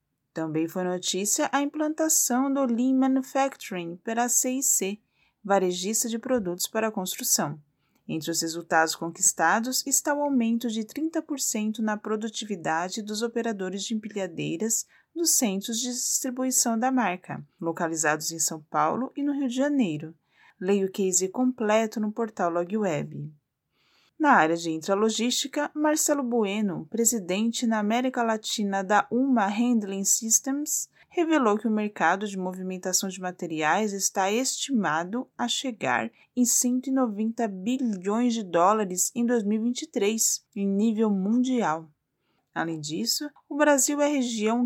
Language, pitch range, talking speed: Portuguese, 185-245 Hz, 130 wpm